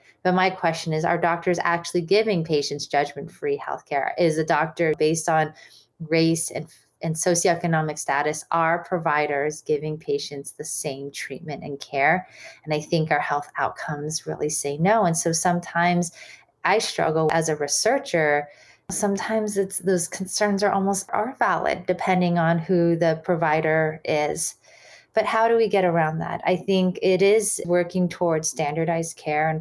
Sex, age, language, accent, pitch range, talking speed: female, 30-49, English, American, 160-195 Hz, 155 wpm